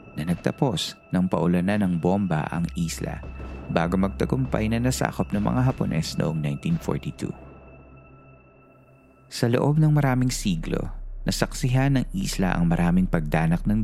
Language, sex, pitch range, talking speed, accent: Filipino, male, 85-120 Hz, 125 wpm, native